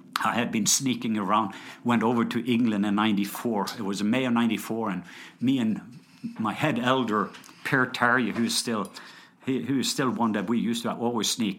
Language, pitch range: English, 115-145 Hz